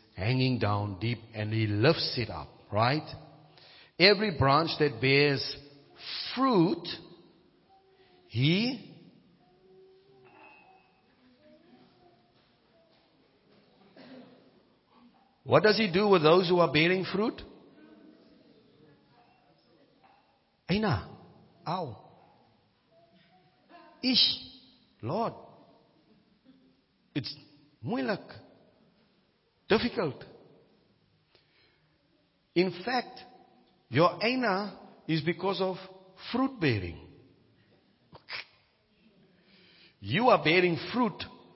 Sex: male